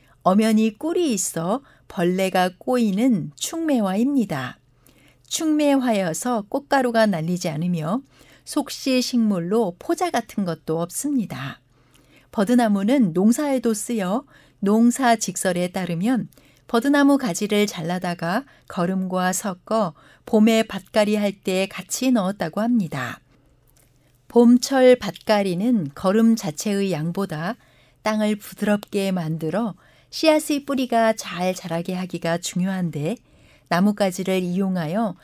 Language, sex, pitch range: Korean, female, 175-230 Hz